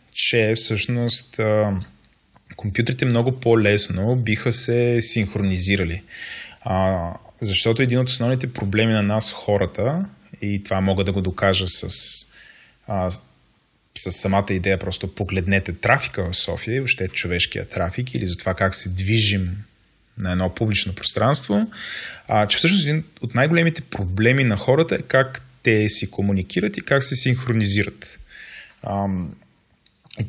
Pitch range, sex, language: 100-125 Hz, male, Bulgarian